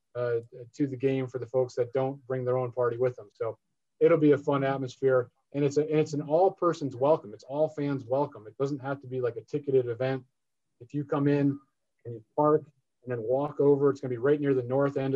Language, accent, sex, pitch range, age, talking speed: English, American, male, 125-140 Hz, 30-49, 250 wpm